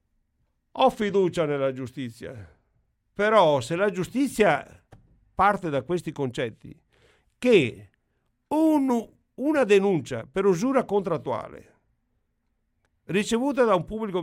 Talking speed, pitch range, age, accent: 95 wpm, 130-205 Hz, 50-69, native